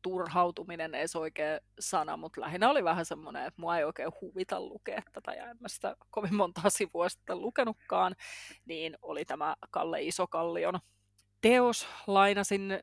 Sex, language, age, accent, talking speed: female, English, 30-49, Finnish, 140 wpm